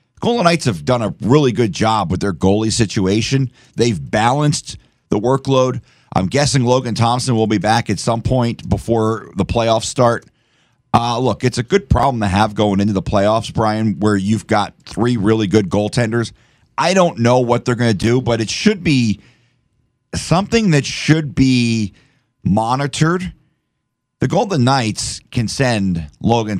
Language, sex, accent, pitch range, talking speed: English, male, American, 105-130 Hz, 165 wpm